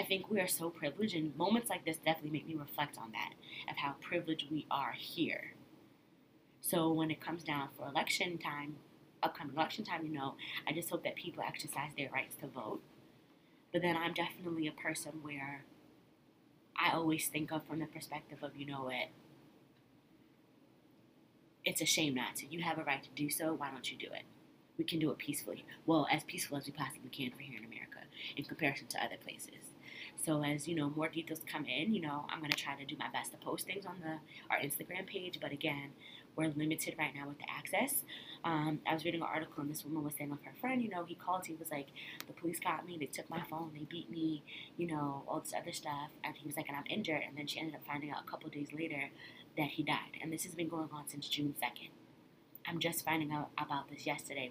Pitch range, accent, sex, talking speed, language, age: 145-165 Hz, American, female, 230 wpm, English, 20-39